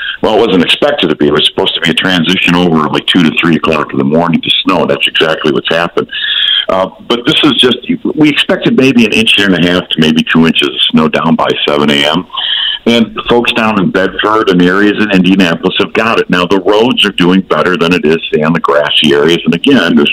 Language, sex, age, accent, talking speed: English, male, 50-69, American, 235 wpm